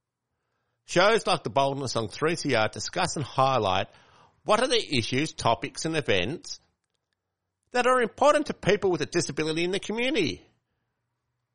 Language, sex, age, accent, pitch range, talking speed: English, male, 50-69, Australian, 105-135 Hz, 140 wpm